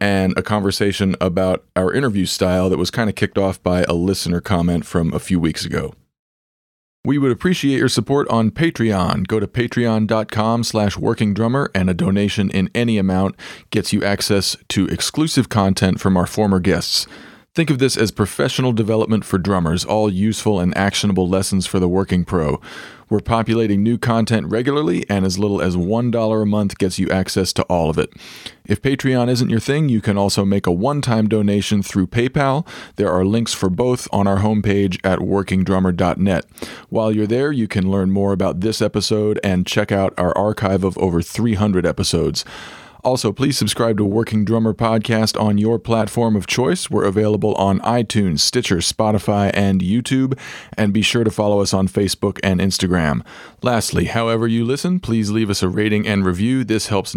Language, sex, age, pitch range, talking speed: English, male, 40-59, 95-115 Hz, 180 wpm